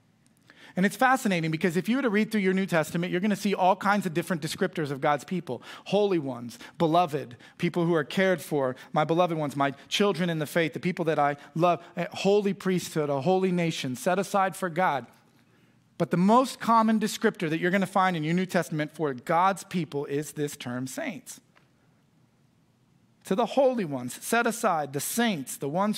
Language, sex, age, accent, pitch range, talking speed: English, male, 40-59, American, 145-200 Hz, 200 wpm